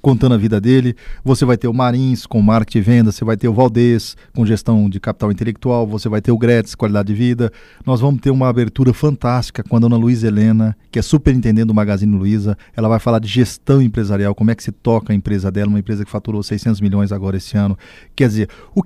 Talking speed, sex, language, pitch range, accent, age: 235 wpm, male, Portuguese, 110-140 Hz, Brazilian, 40-59